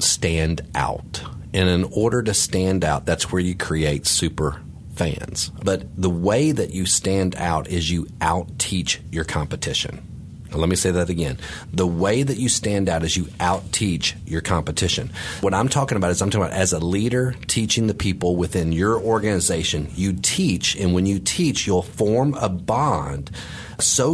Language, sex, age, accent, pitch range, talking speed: English, male, 40-59, American, 90-120 Hz, 175 wpm